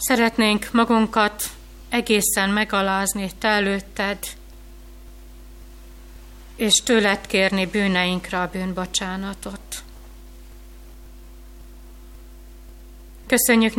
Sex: female